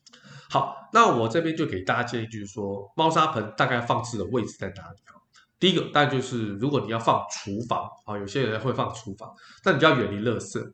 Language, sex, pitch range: Chinese, male, 105-130 Hz